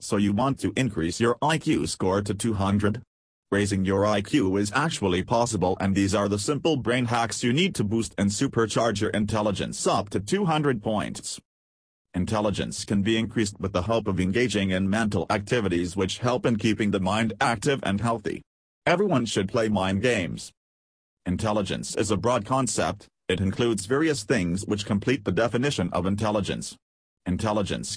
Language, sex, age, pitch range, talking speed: English, male, 40-59, 95-115 Hz, 165 wpm